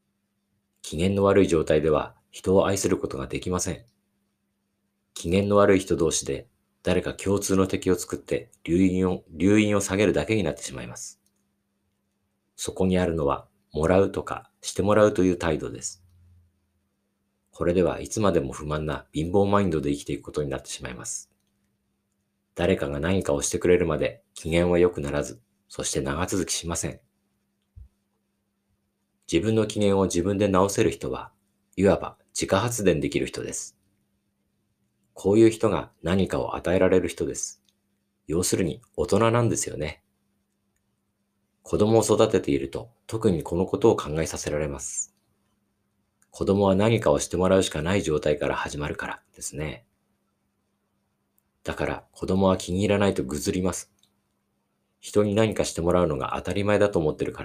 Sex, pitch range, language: male, 85-100 Hz, Japanese